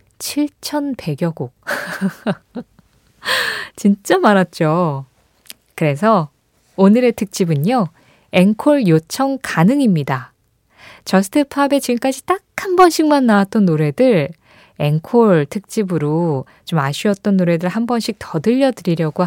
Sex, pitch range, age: female, 165-245 Hz, 20-39